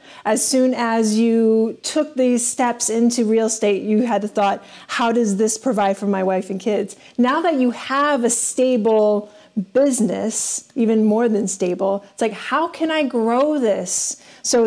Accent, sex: American, female